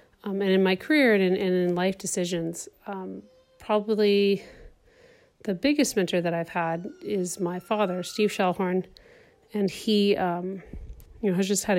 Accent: American